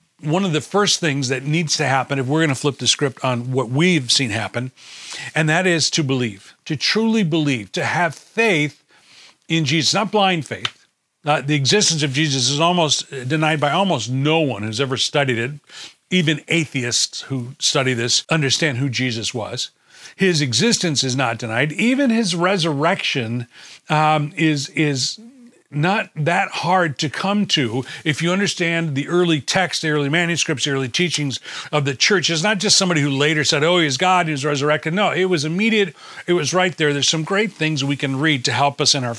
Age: 40-59